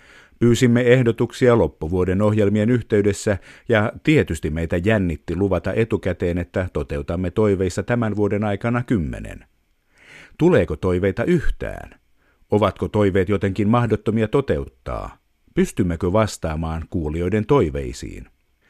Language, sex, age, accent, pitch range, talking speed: Finnish, male, 50-69, native, 85-110 Hz, 95 wpm